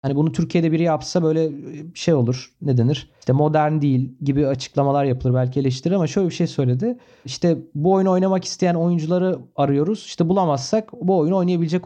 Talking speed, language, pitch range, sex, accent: 175 wpm, Turkish, 145-195 Hz, male, native